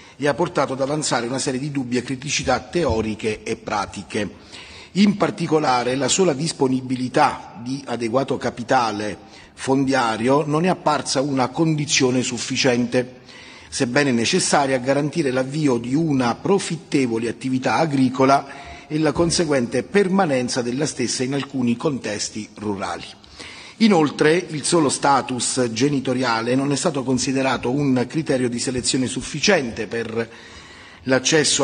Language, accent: Italian, native